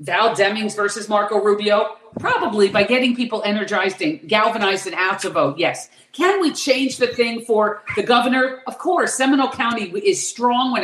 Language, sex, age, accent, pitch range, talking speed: English, female, 40-59, American, 195-245 Hz, 175 wpm